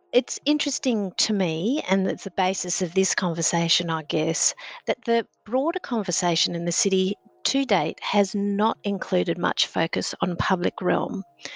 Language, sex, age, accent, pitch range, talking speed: English, female, 50-69, Australian, 175-225 Hz, 155 wpm